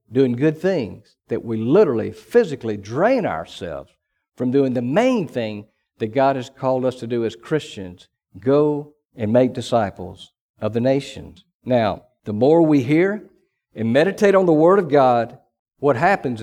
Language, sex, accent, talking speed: English, male, American, 160 wpm